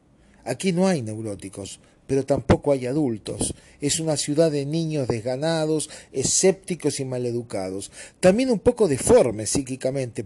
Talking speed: 130 wpm